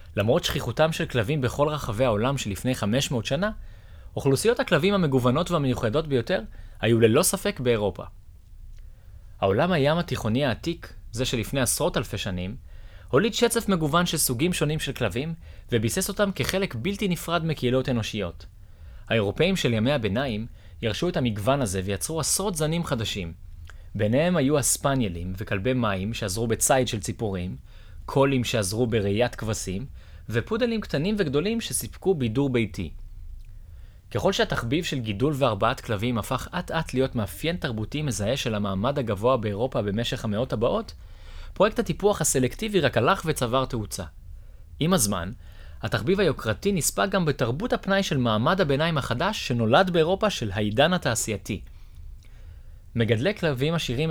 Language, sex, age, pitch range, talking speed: English, male, 30-49, 100-150 Hz, 135 wpm